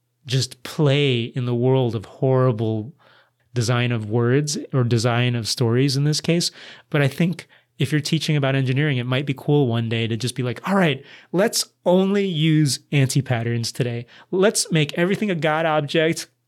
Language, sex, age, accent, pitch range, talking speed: English, male, 30-49, American, 120-155 Hz, 175 wpm